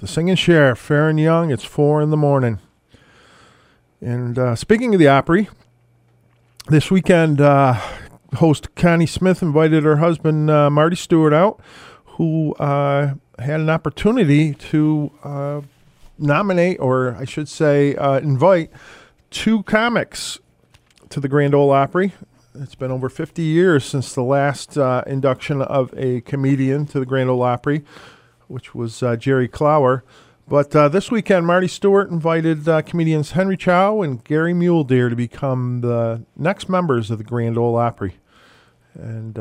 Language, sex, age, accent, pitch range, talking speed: English, male, 40-59, American, 125-155 Hz, 150 wpm